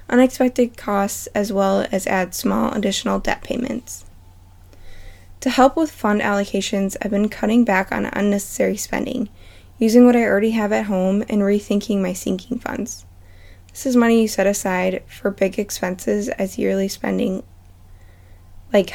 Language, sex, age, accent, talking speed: English, female, 10-29, American, 150 wpm